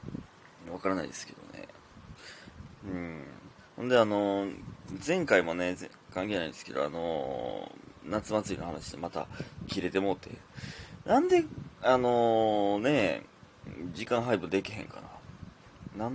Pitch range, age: 100-130 Hz, 20-39